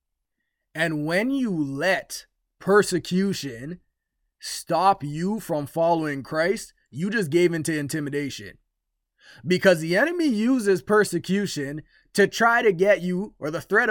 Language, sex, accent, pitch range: English, male, American, 150-200 Hz